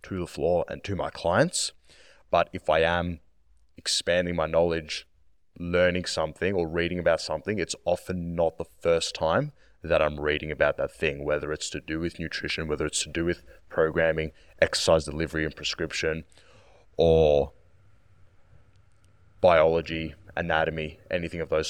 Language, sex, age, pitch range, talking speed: English, male, 20-39, 80-90 Hz, 150 wpm